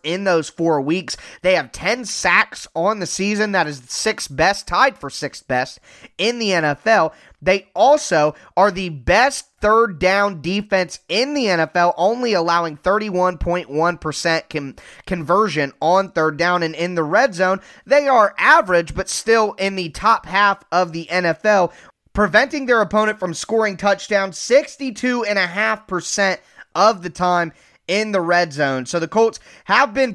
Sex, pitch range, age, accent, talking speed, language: male, 175-215 Hz, 20-39, American, 155 wpm, English